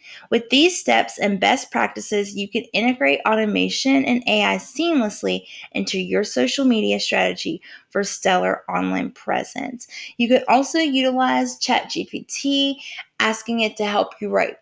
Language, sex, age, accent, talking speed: English, female, 20-39, American, 135 wpm